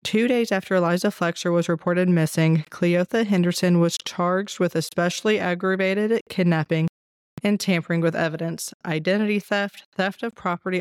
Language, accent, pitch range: English, American, 165-195 Hz